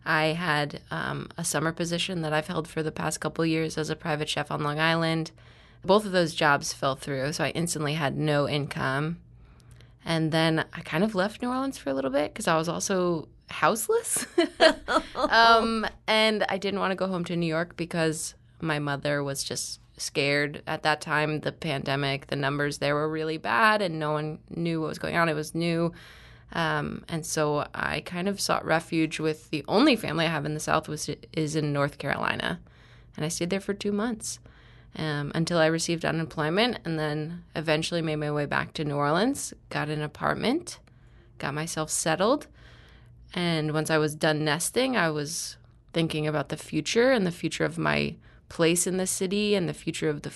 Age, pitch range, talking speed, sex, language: 20-39, 150-175 Hz, 200 wpm, female, English